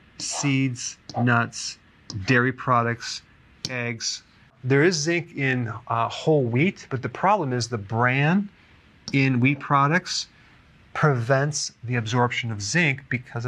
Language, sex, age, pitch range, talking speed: English, male, 40-59, 120-140 Hz, 120 wpm